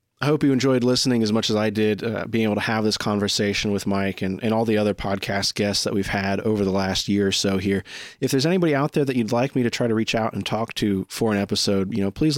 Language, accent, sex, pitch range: English, American, male, 100-120 Hz